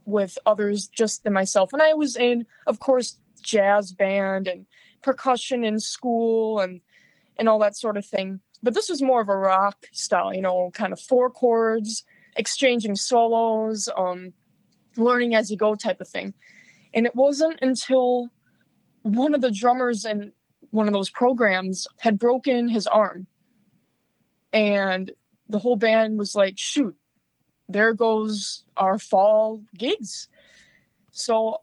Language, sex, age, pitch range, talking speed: English, female, 20-39, 205-245 Hz, 150 wpm